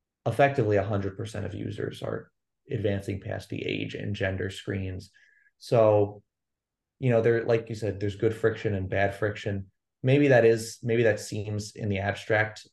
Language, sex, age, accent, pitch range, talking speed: English, male, 20-39, American, 100-115 Hz, 160 wpm